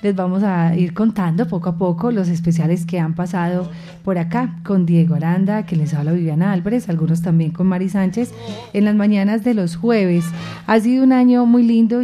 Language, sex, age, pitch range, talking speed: Spanish, female, 30-49, 170-200 Hz, 200 wpm